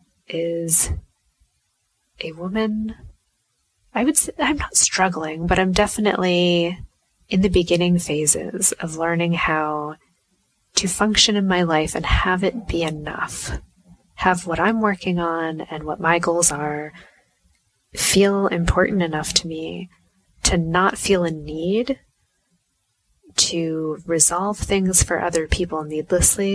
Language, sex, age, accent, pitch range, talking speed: English, female, 20-39, American, 160-195 Hz, 125 wpm